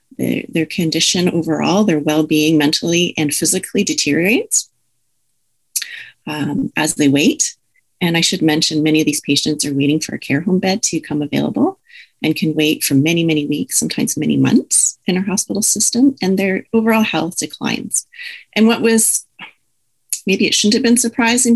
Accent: American